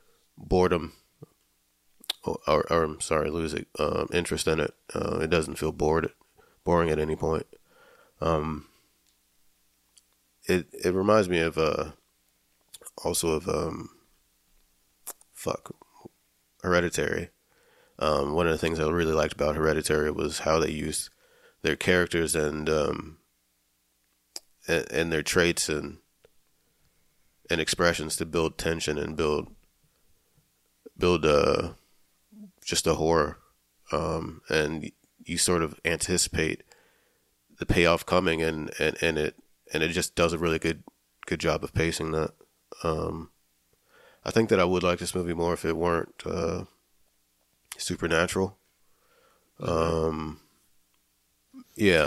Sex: male